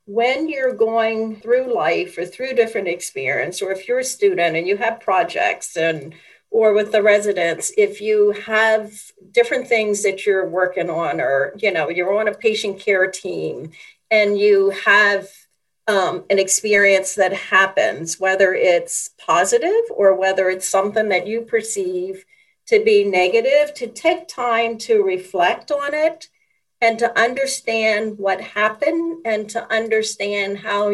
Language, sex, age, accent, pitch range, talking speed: English, female, 50-69, American, 190-240 Hz, 150 wpm